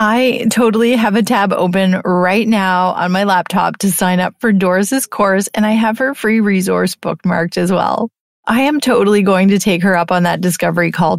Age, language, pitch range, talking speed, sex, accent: 30-49, English, 190-235 Hz, 205 wpm, female, American